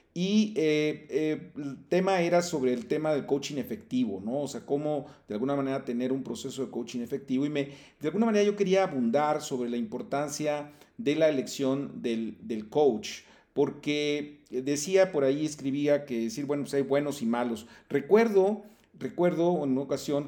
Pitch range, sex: 125-160 Hz, male